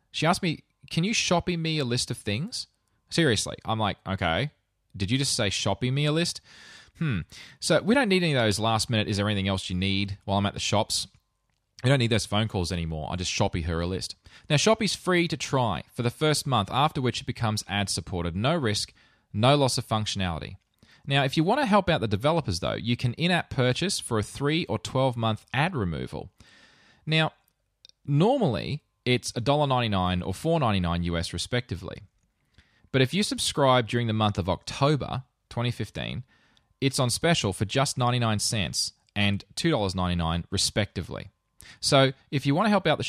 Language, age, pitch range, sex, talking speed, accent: English, 20-39, 100-140 Hz, male, 190 wpm, Australian